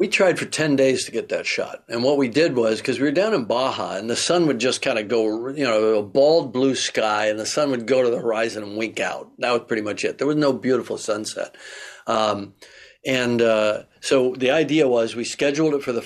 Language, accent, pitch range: English, American, 115-140 Hz